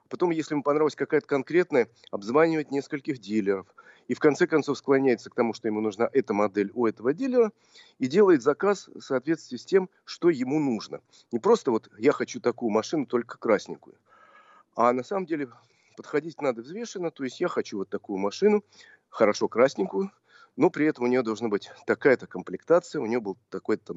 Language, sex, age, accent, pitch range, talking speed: Russian, male, 40-59, native, 115-175 Hz, 180 wpm